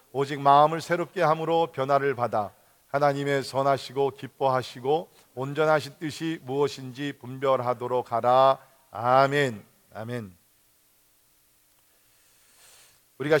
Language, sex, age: Korean, male, 40-59